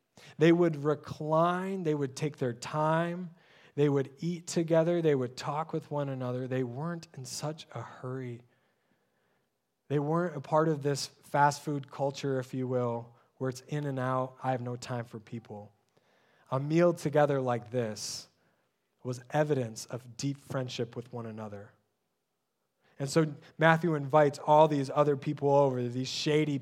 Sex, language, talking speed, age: male, English, 160 wpm, 20-39